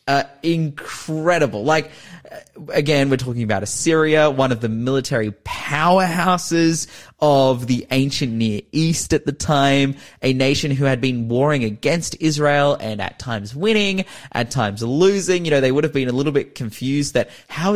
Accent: Australian